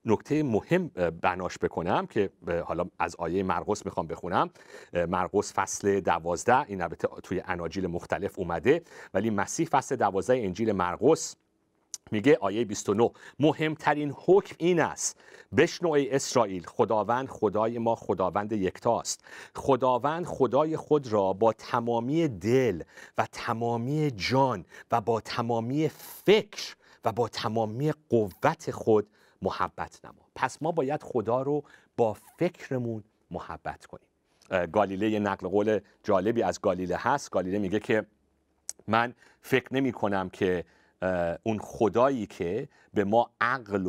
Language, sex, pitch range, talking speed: Persian, male, 100-135 Hz, 125 wpm